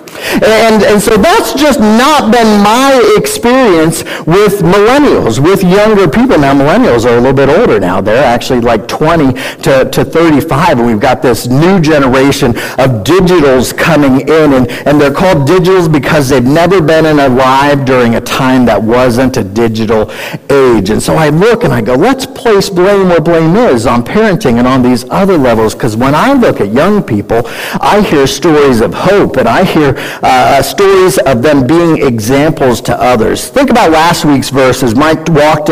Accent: American